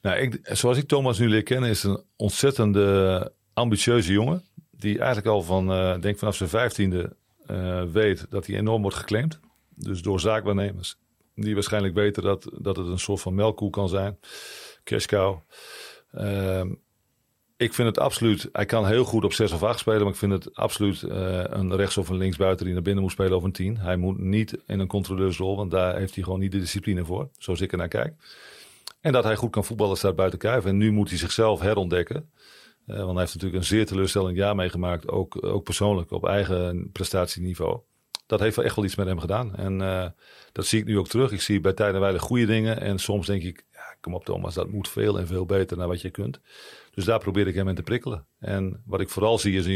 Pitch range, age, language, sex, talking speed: 95-110 Hz, 40-59, Dutch, male, 225 wpm